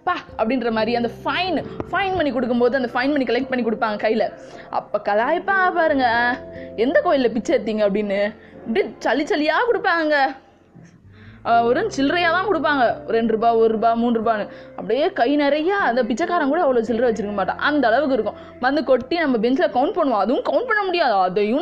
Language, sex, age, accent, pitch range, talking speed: Tamil, female, 20-39, native, 225-290 Hz, 165 wpm